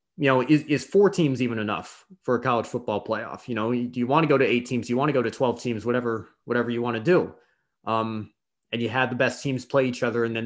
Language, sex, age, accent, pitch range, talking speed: English, male, 20-39, American, 120-145 Hz, 275 wpm